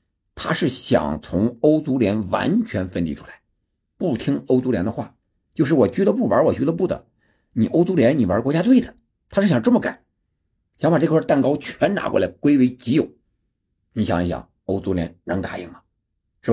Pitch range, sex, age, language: 95-130 Hz, male, 50-69, Chinese